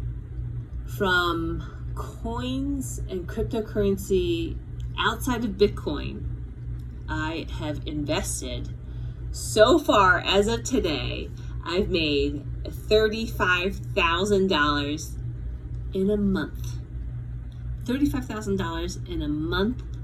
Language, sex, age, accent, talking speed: English, female, 30-49, American, 75 wpm